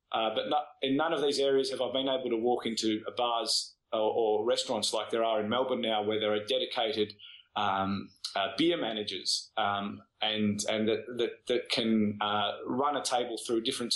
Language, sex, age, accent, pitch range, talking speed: English, male, 20-39, Australian, 110-135 Hz, 200 wpm